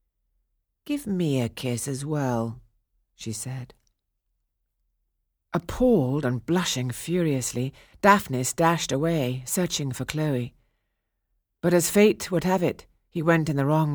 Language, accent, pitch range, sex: English, British, 110-165 Hz, female